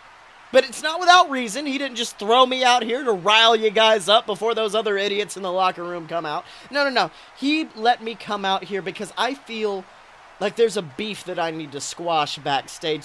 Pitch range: 195-240 Hz